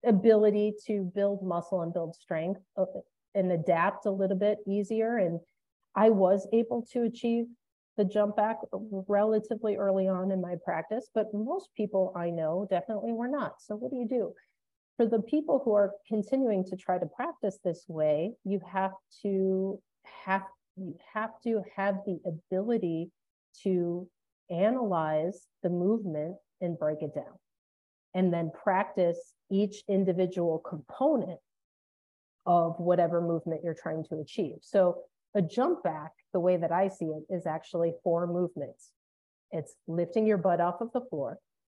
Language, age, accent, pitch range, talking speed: English, 40-59, American, 165-210 Hz, 150 wpm